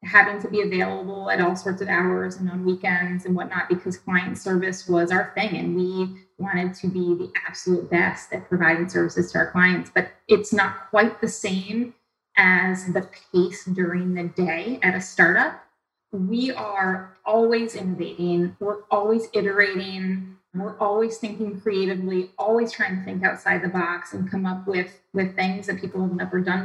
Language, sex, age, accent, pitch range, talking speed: English, female, 20-39, American, 185-210 Hz, 175 wpm